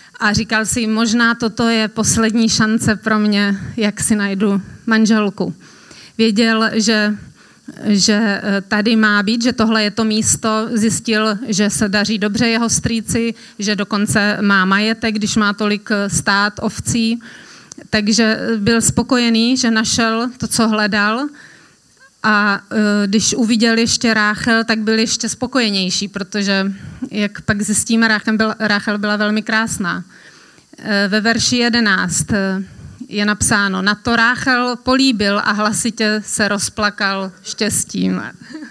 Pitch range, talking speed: 210-235 Hz, 130 wpm